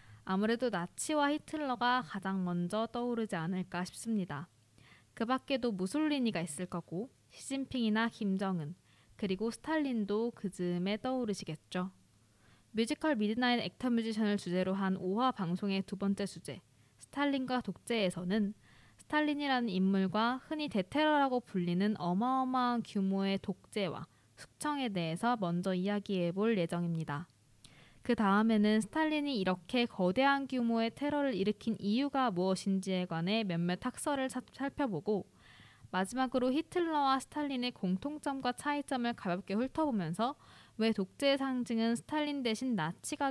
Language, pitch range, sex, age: Korean, 180-250 Hz, female, 20-39